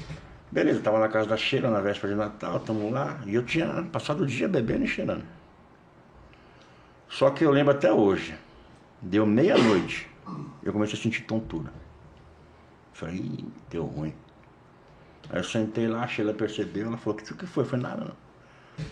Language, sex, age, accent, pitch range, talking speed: Portuguese, male, 60-79, Brazilian, 90-115 Hz, 180 wpm